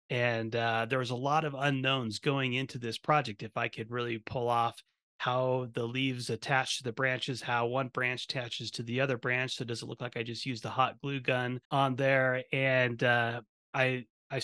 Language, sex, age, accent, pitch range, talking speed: English, male, 30-49, American, 120-140 Hz, 210 wpm